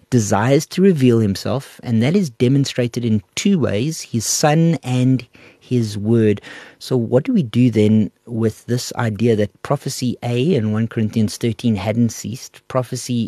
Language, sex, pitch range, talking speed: English, male, 105-130 Hz, 160 wpm